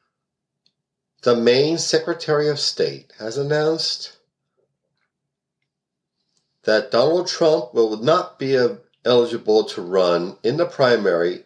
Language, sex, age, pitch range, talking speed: English, male, 50-69, 130-180 Hz, 100 wpm